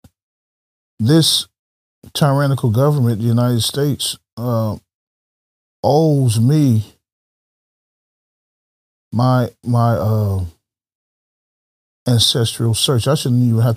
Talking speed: 80 wpm